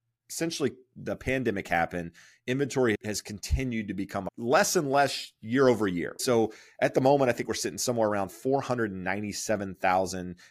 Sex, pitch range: male, 100-125 Hz